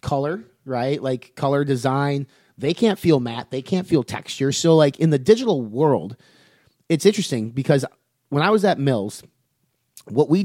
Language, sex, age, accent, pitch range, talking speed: English, male, 30-49, American, 120-155 Hz, 165 wpm